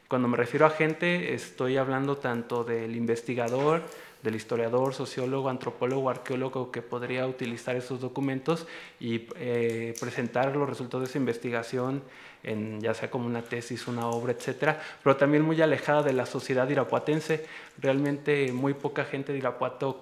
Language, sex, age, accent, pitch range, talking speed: Spanish, male, 20-39, Mexican, 125-140 Hz, 155 wpm